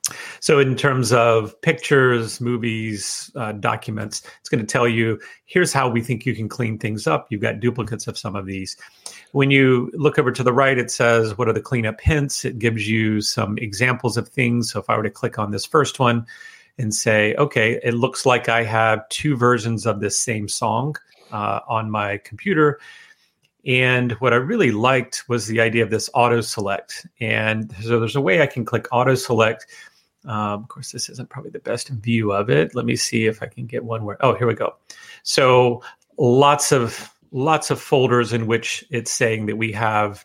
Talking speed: 205 wpm